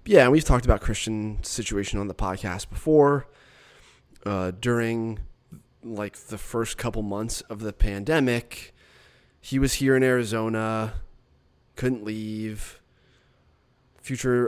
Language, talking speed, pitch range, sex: English, 115 wpm, 100-125 Hz, male